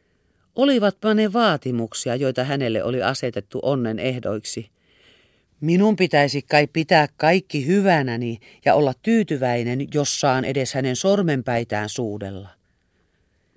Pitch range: 115-160 Hz